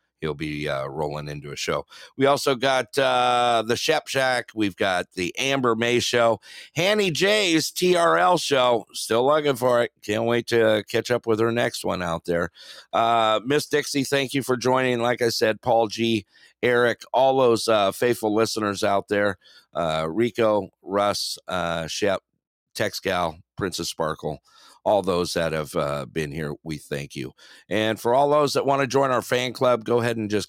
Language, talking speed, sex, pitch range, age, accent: English, 180 wpm, male, 95-135 Hz, 50-69, American